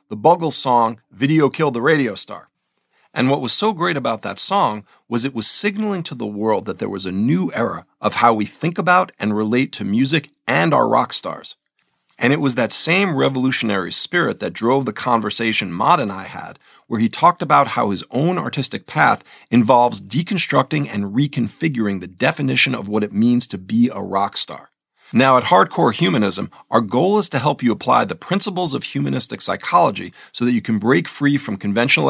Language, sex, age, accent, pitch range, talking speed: English, male, 40-59, American, 110-145 Hz, 195 wpm